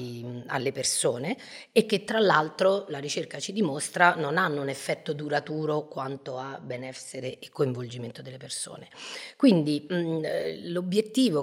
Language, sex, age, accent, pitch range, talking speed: Italian, female, 30-49, native, 135-185 Hz, 125 wpm